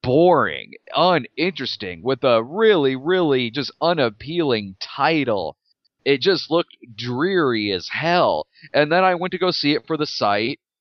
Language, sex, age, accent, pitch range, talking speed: English, male, 30-49, American, 145-225 Hz, 145 wpm